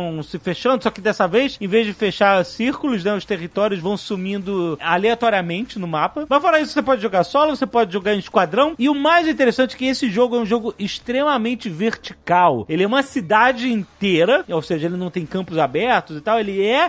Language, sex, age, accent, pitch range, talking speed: Portuguese, male, 40-59, Brazilian, 195-255 Hz, 215 wpm